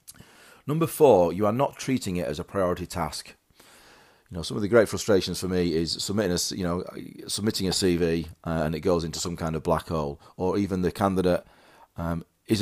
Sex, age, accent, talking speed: male, 40-59, British, 205 wpm